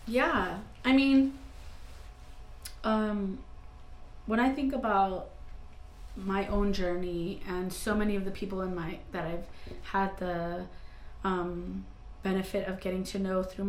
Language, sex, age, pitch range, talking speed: English, female, 20-39, 180-205 Hz, 130 wpm